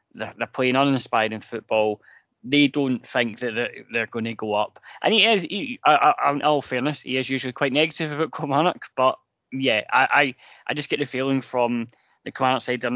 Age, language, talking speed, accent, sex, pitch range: 10-29, English, 190 wpm, British, male, 120-145 Hz